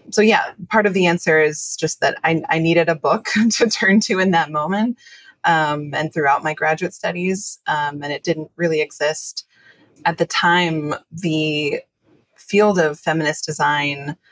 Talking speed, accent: 170 wpm, American